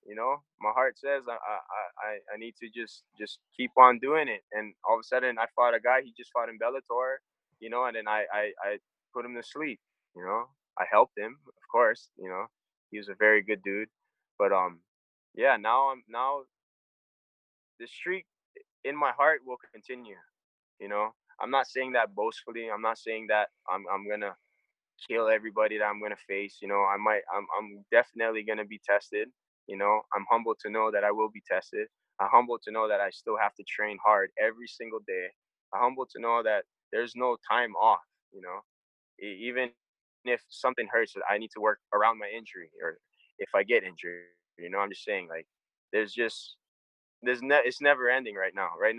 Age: 20-39